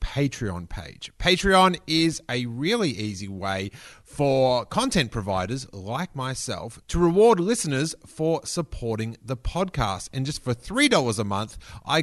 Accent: Australian